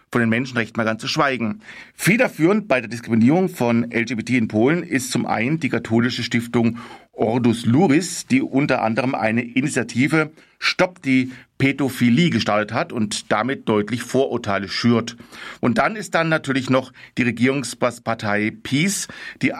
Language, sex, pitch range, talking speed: German, male, 115-145 Hz, 145 wpm